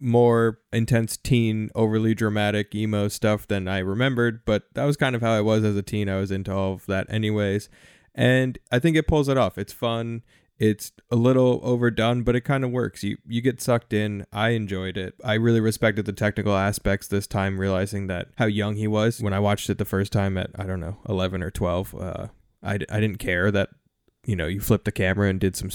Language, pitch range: English, 100-115 Hz